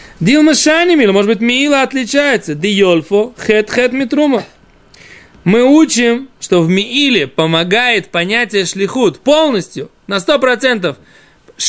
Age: 20-39